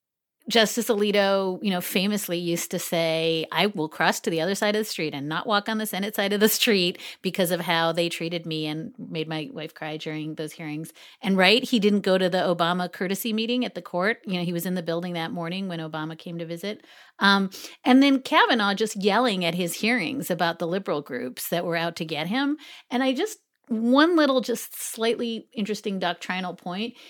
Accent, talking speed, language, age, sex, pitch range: American, 215 wpm, English, 30-49, female, 170-220 Hz